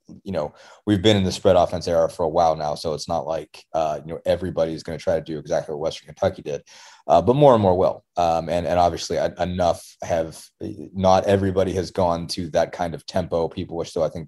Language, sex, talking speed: English, male, 240 wpm